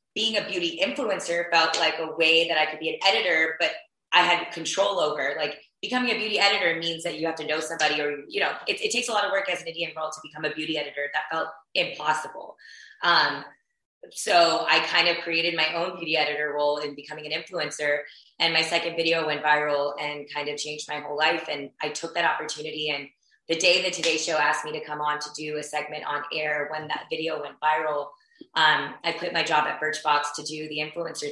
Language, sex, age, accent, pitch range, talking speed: English, female, 20-39, American, 150-205 Hz, 230 wpm